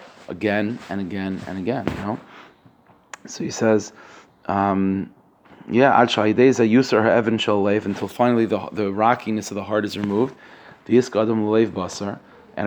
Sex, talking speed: male, 110 wpm